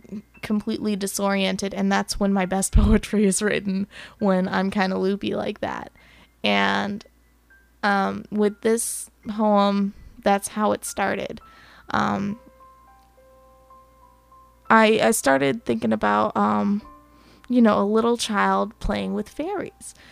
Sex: female